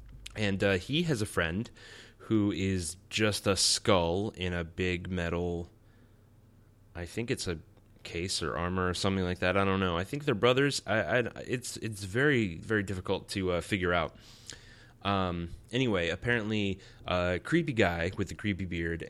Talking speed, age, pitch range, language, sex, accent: 170 wpm, 20-39, 90-115 Hz, English, male, American